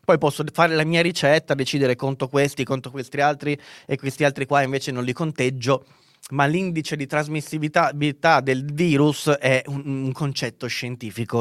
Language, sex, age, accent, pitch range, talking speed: Italian, male, 20-39, native, 125-155 Hz, 165 wpm